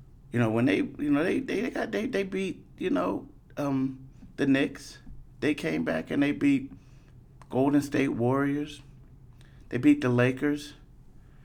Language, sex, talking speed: English, male, 155 wpm